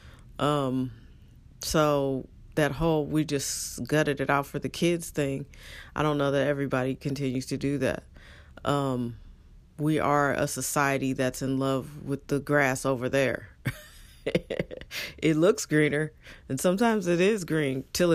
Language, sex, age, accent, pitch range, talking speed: English, female, 40-59, American, 125-150 Hz, 145 wpm